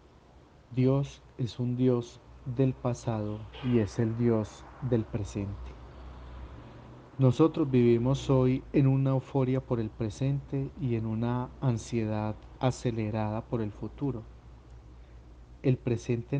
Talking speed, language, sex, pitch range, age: 115 wpm, Spanish, male, 105-130 Hz, 40-59